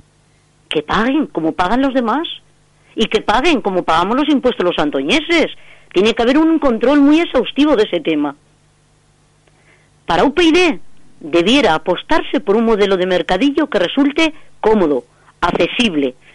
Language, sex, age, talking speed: Spanish, female, 40-59, 140 wpm